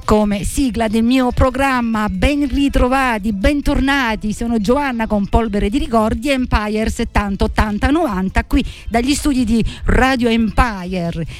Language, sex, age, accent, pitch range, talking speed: Italian, female, 50-69, native, 175-235 Hz, 125 wpm